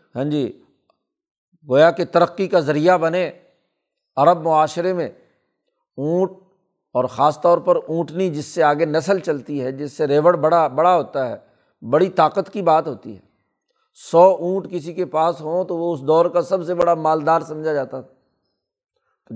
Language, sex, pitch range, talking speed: Urdu, male, 145-180 Hz, 165 wpm